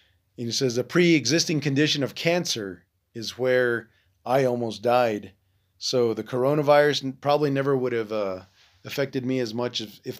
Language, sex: English, male